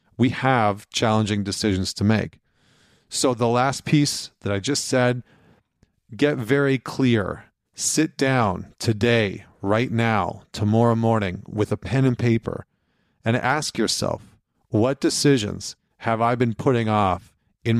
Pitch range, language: 105-125 Hz, English